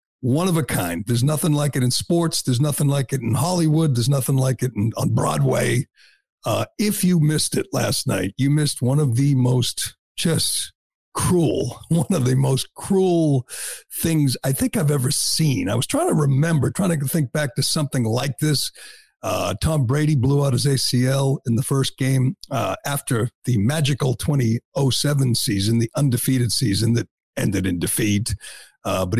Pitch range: 125-155 Hz